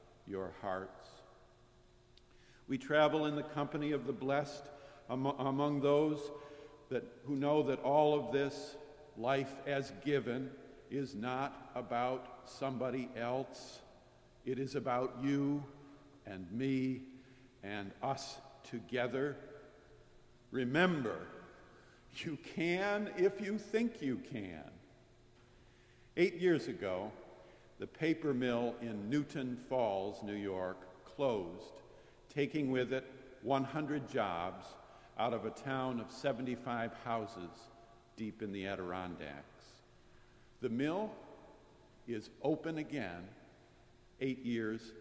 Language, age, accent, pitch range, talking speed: English, 50-69, American, 115-140 Hz, 105 wpm